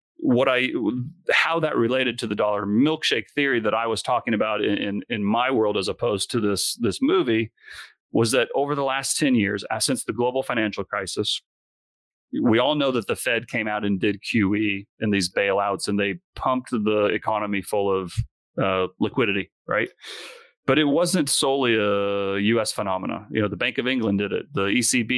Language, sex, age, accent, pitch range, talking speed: English, male, 30-49, American, 100-120 Hz, 190 wpm